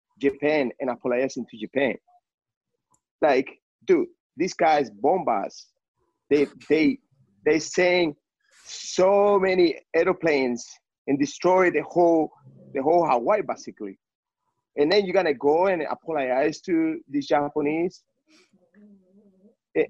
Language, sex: English, male